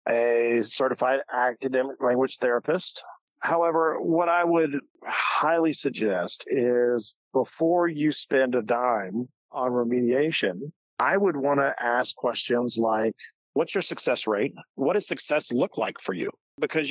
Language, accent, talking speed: English, American, 135 wpm